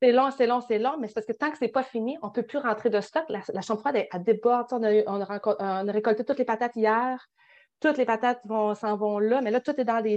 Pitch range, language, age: 220-280 Hz, French, 30-49